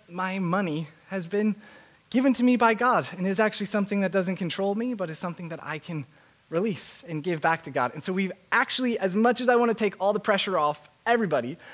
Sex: male